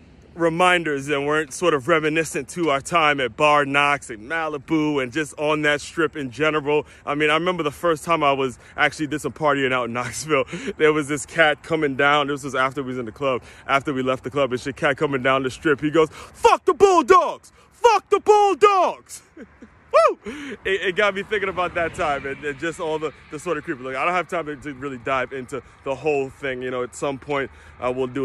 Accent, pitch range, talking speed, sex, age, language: American, 130-160 Hz, 235 wpm, male, 20-39, English